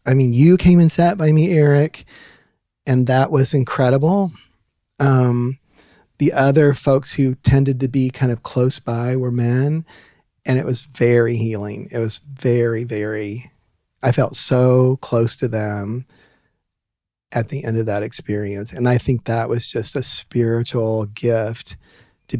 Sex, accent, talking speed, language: male, American, 155 wpm, English